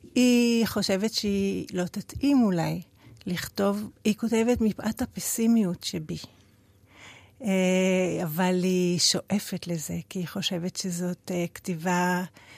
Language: Hebrew